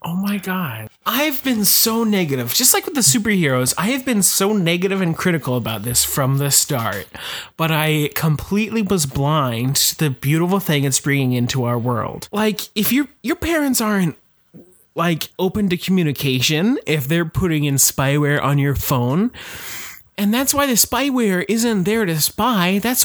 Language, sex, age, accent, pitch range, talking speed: English, male, 30-49, American, 140-210 Hz, 170 wpm